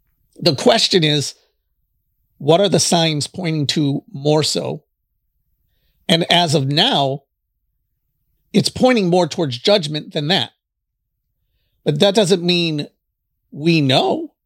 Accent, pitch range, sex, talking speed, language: American, 140-190 Hz, male, 115 wpm, English